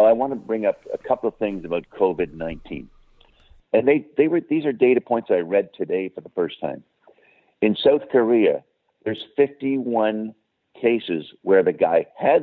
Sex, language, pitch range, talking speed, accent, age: male, English, 90-115 Hz, 180 wpm, American, 60-79